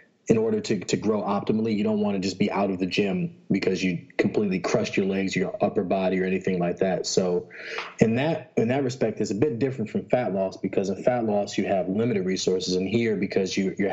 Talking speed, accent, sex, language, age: 235 wpm, American, male, English, 20-39